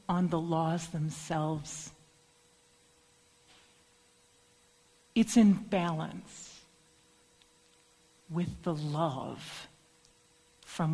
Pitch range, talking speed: 160-215 Hz, 60 wpm